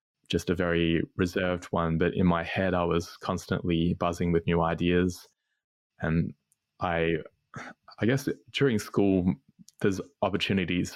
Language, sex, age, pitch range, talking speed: English, male, 20-39, 85-95 Hz, 130 wpm